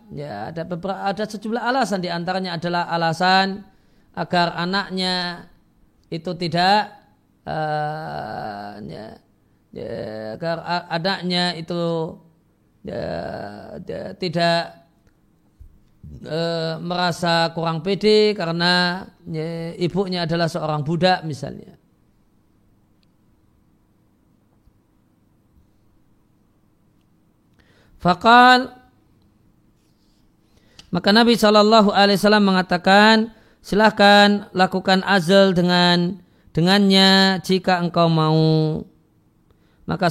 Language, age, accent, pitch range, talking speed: Indonesian, 40-59, native, 165-200 Hz, 70 wpm